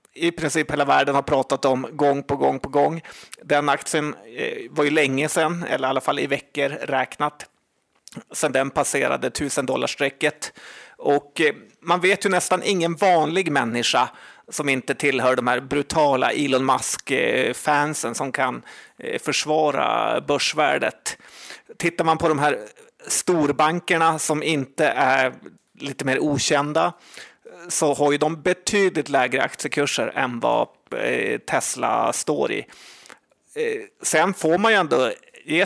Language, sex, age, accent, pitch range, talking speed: Swedish, male, 30-49, native, 145-180 Hz, 135 wpm